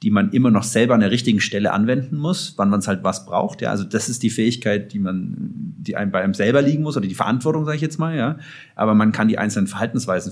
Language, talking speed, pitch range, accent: German, 270 wpm, 95-125 Hz, German